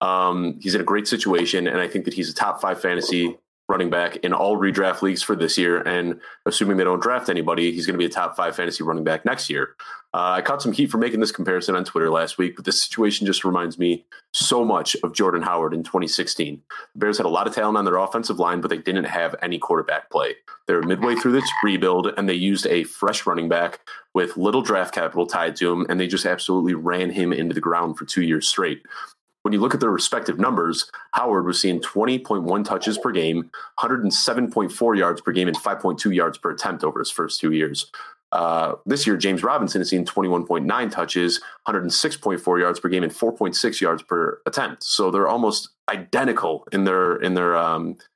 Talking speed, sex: 215 wpm, male